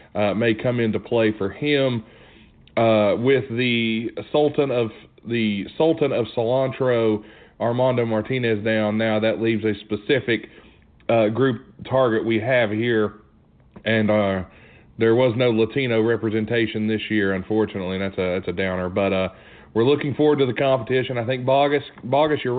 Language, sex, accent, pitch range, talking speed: English, male, American, 105-130 Hz, 155 wpm